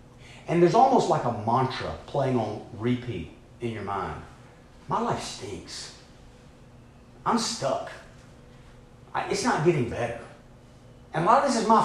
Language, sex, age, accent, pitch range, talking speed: English, male, 40-59, American, 120-180 Hz, 145 wpm